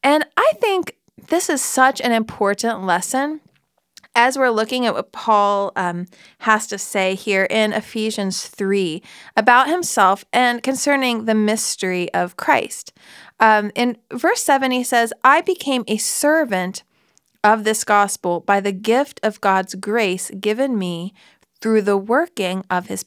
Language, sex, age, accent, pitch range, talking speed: English, female, 30-49, American, 205-265 Hz, 150 wpm